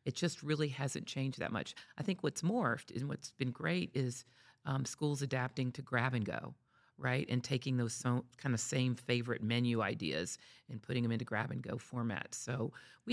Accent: American